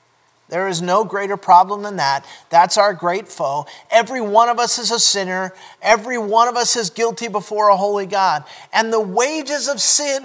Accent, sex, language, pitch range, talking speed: American, male, English, 165-240 Hz, 195 wpm